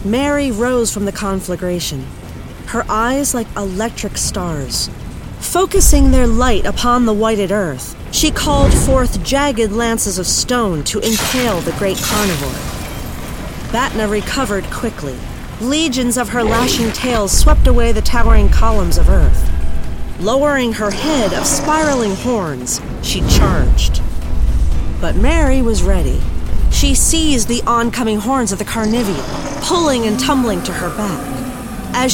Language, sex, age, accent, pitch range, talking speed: English, female, 40-59, American, 190-265 Hz, 135 wpm